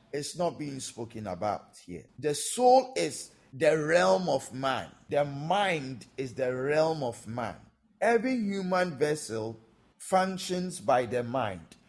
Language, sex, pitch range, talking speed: English, male, 125-185 Hz, 135 wpm